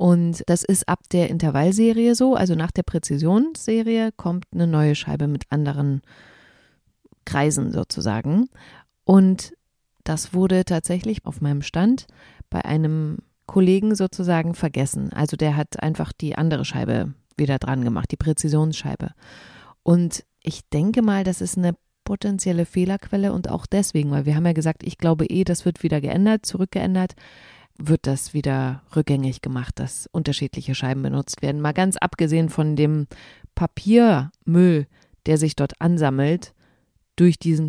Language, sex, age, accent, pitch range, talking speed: German, female, 30-49, German, 150-190 Hz, 145 wpm